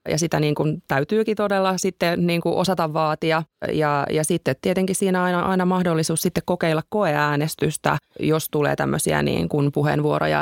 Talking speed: 165 wpm